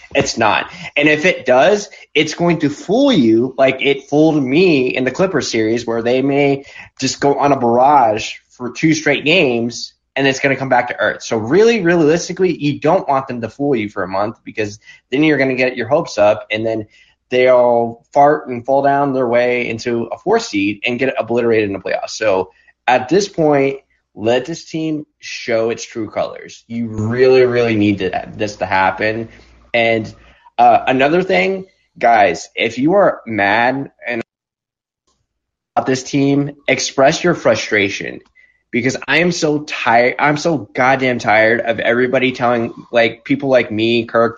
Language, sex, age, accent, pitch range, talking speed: English, male, 20-39, American, 115-145 Hz, 180 wpm